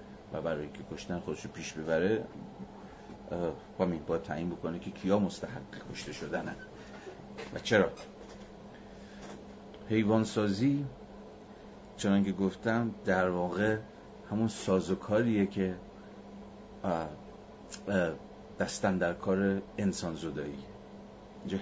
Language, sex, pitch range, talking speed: Persian, male, 90-105 Hz, 90 wpm